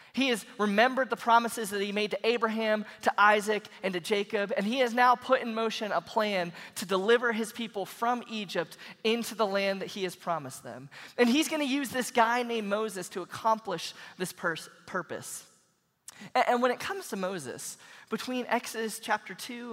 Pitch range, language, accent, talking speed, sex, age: 180-235 Hz, English, American, 190 wpm, male, 20-39